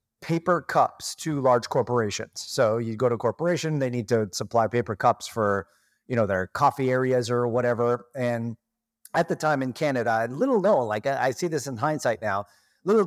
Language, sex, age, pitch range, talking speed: English, male, 30-49, 120-165 Hz, 190 wpm